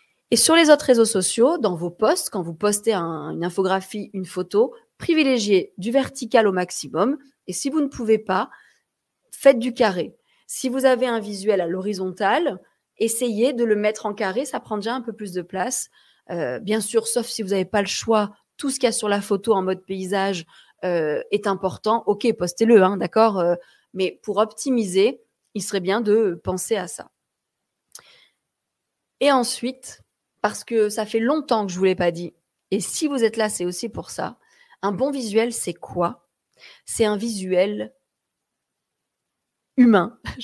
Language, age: French, 30-49